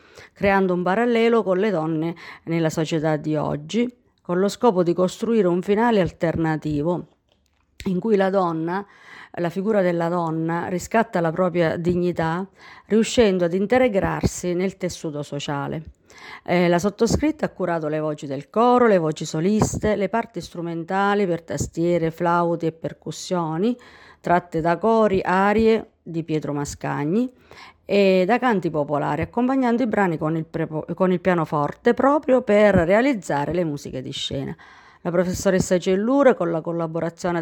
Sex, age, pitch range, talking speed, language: female, 50-69, 160-205 Hz, 145 wpm, Italian